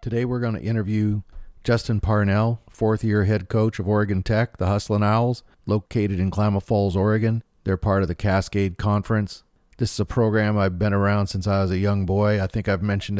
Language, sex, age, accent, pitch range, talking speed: English, male, 40-59, American, 95-115 Hz, 200 wpm